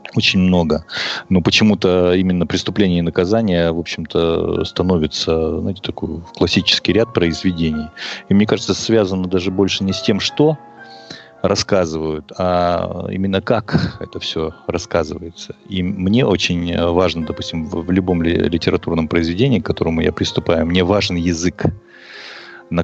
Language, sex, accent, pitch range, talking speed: Russian, male, native, 85-95 Hz, 135 wpm